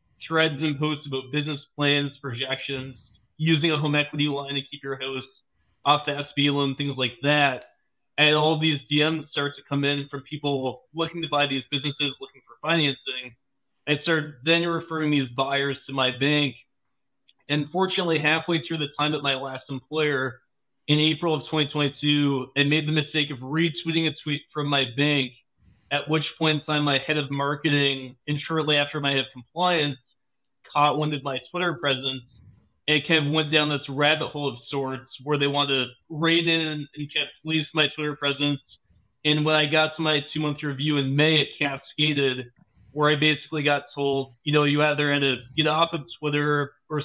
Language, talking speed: English, 185 wpm